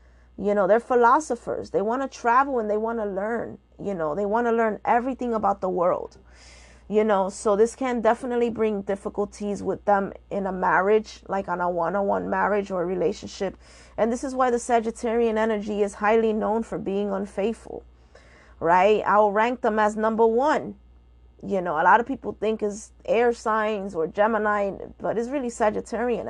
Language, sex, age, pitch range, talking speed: English, female, 30-49, 185-225 Hz, 185 wpm